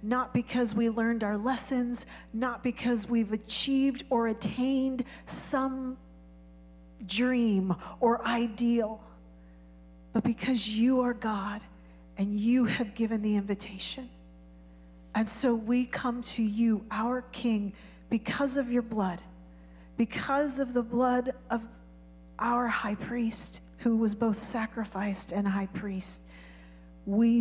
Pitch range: 195-235 Hz